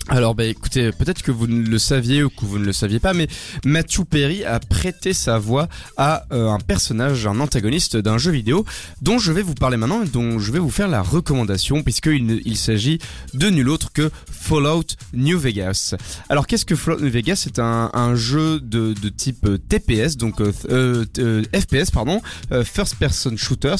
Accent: French